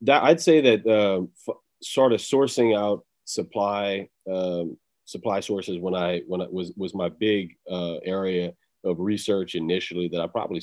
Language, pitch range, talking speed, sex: English, 90-105 Hz, 170 wpm, male